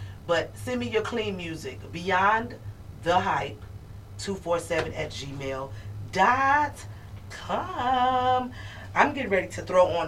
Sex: female